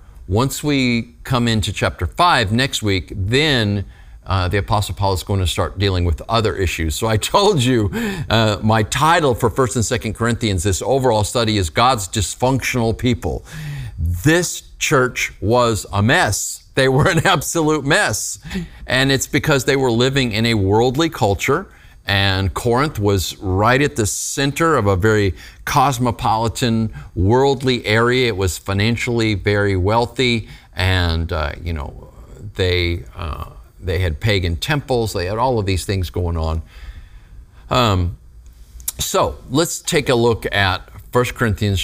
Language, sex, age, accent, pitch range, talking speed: English, male, 40-59, American, 95-125 Hz, 150 wpm